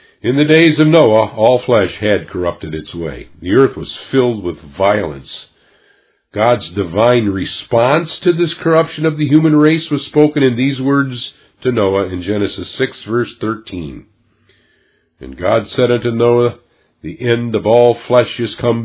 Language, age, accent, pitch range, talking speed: English, 50-69, American, 100-135 Hz, 160 wpm